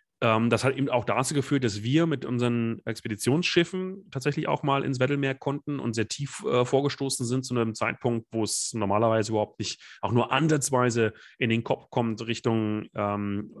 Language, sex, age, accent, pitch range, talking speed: German, male, 30-49, German, 110-135 Hz, 175 wpm